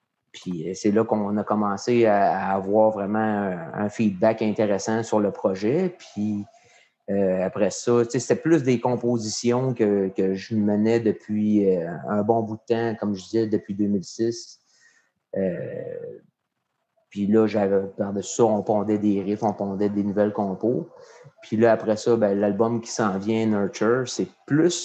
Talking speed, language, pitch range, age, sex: 155 wpm, French, 100-115 Hz, 30-49, male